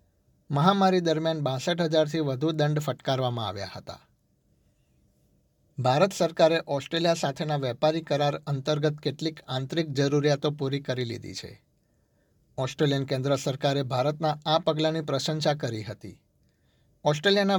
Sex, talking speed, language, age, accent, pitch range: male, 90 wpm, Gujarati, 60-79, native, 135-160 Hz